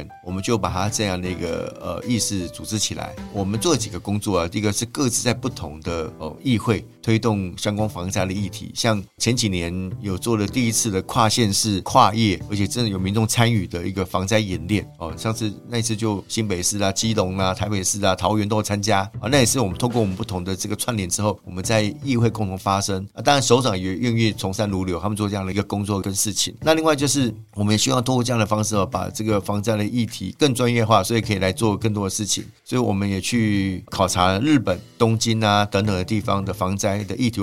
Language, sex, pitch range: Chinese, male, 95-115 Hz